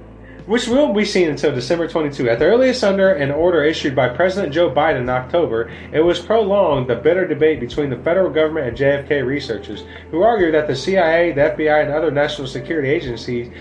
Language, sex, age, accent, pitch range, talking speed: English, male, 30-49, American, 120-170 Hz, 200 wpm